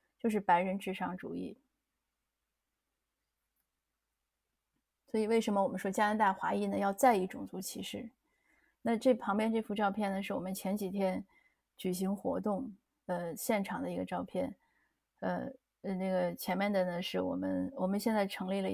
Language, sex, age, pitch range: Chinese, female, 30-49, 185-220 Hz